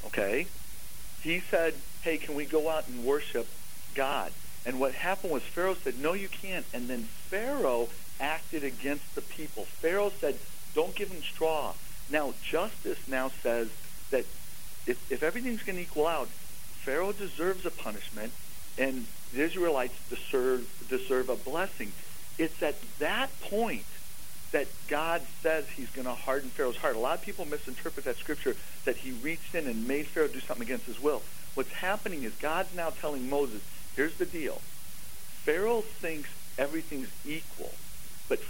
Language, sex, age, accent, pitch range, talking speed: English, male, 50-69, American, 135-190 Hz, 160 wpm